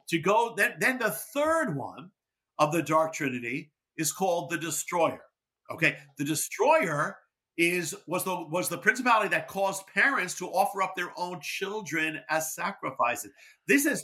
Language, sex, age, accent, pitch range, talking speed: English, male, 50-69, American, 160-215 Hz, 160 wpm